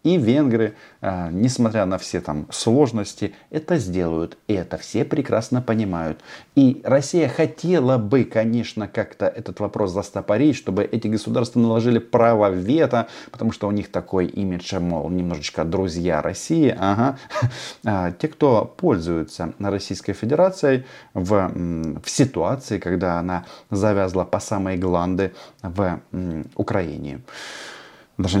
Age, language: 30-49, Russian